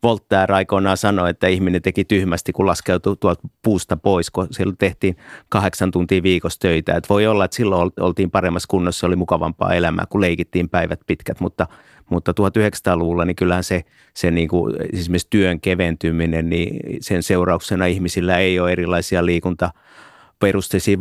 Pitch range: 90-100 Hz